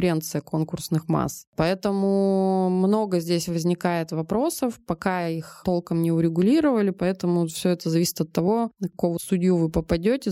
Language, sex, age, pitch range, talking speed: Russian, female, 20-39, 165-195 Hz, 135 wpm